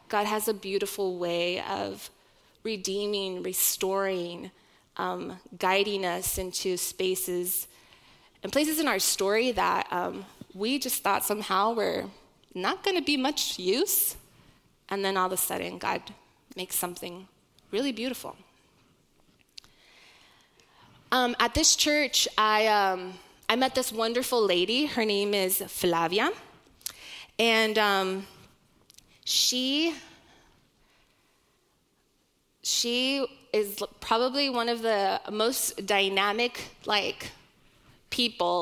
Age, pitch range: 20-39, 190-250 Hz